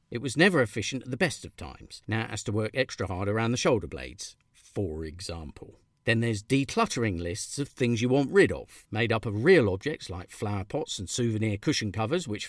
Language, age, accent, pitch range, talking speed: English, 50-69, British, 105-145 Hz, 215 wpm